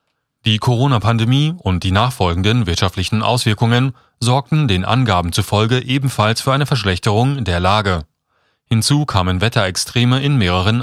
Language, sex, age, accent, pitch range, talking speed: German, male, 30-49, German, 95-130 Hz, 120 wpm